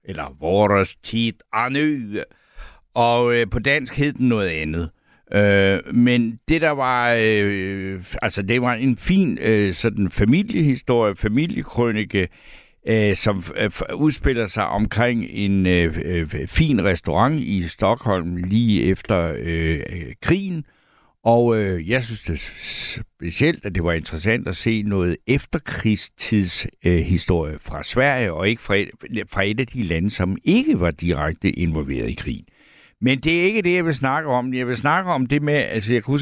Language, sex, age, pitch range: Danish, male, 60-79, 95-130 Hz